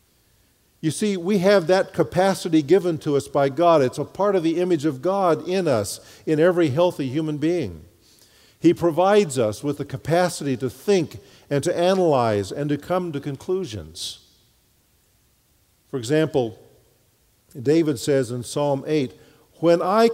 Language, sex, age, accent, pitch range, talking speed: English, male, 50-69, American, 110-175 Hz, 150 wpm